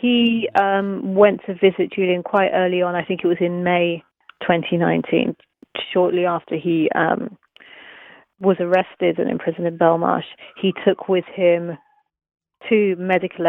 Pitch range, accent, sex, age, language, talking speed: 170-190 Hz, British, female, 30-49, English, 140 wpm